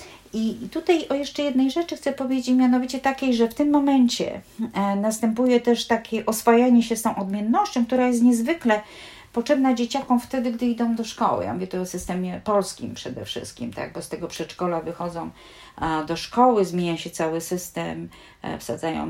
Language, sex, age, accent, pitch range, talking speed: Polish, female, 40-59, native, 165-230 Hz, 165 wpm